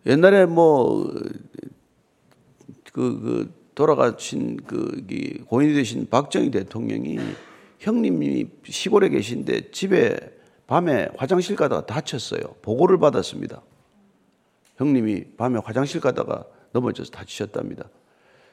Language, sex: Korean, male